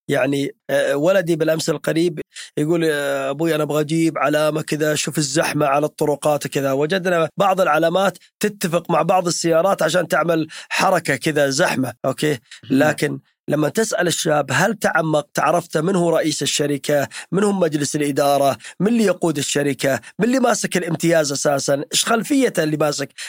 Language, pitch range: Arabic, 145-180 Hz